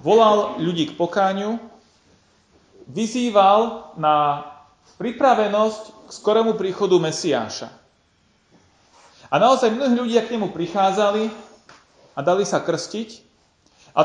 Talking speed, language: 100 wpm, Slovak